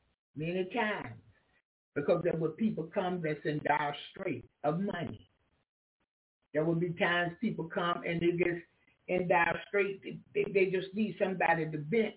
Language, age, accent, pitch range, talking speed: English, 60-79, American, 140-185 Hz, 155 wpm